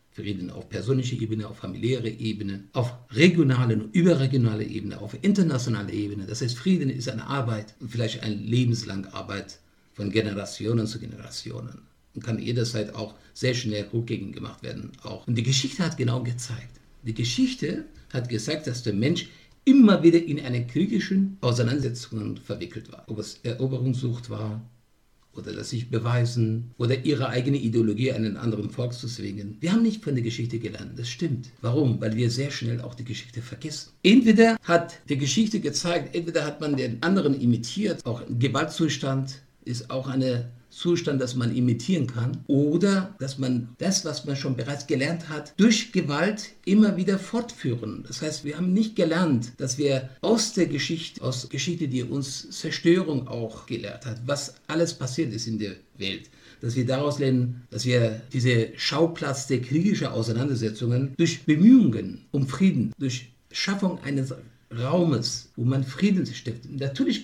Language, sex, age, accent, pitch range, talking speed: German, male, 50-69, German, 115-150 Hz, 165 wpm